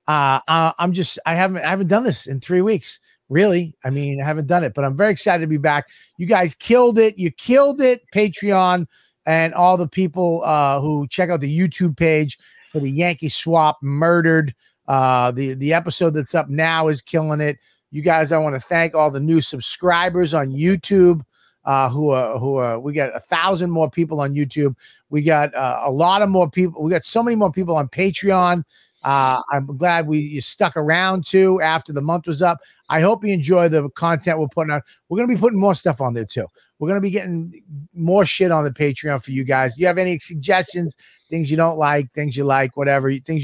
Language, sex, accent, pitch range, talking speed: English, male, American, 140-180 Hz, 220 wpm